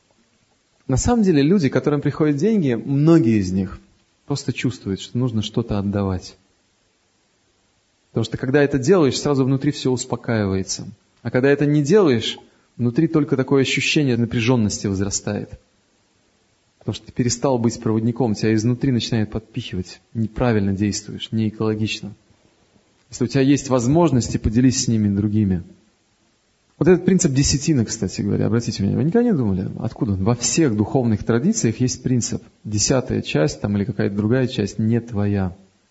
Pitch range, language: 105-135 Hz, Russian